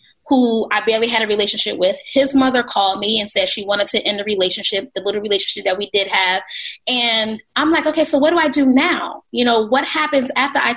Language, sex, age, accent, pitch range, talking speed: English, female, 20-39, American, 210-265 Hz, 235 wpm